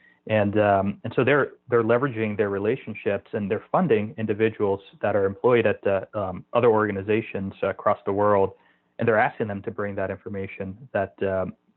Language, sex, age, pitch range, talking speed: English, male, 30-49, 100-115 Hz, 175 wpm